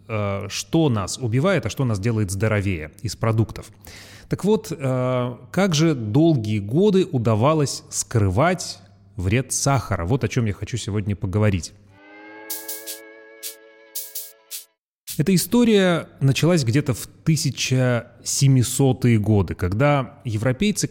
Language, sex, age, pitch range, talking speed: Russian, male, 30-49, 105-140 Hz, 105 wpm